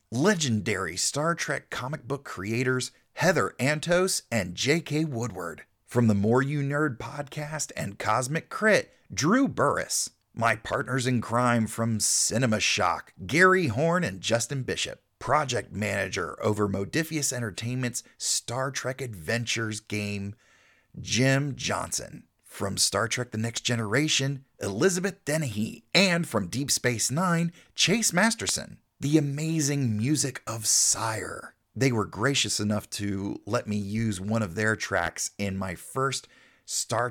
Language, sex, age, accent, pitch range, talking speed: English, male, 40-59, American, 105-145 Hz, 130 wpm